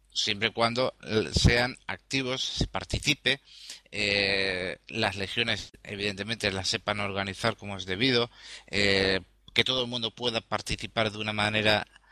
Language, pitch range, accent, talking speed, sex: Spanish, 105-125 Hz, Spanish, 135 wpm, male